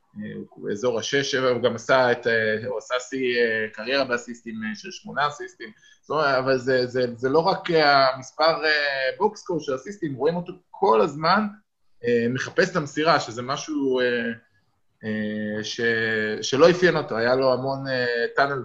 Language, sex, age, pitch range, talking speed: Hebrew, male, 20-39, 120-150 Hz, 135 wpm